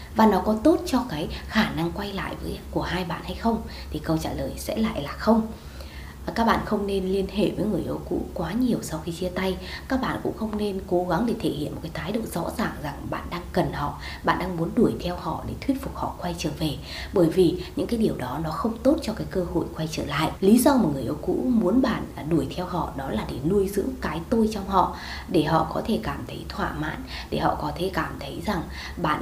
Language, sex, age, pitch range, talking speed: Vietnamese, female, 20-39, 160-215 Hz, 260 wpm